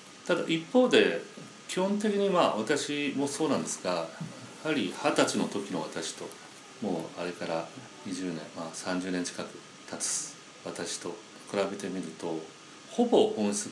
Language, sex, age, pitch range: Japanese, male, 40-59, 95-155 Hz